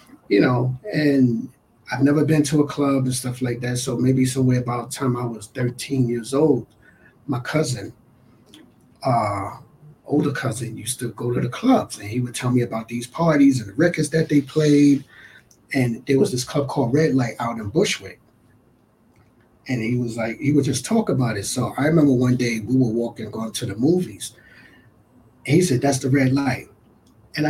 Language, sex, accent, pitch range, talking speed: English, male, American, 120-145 Hz, 195 wpm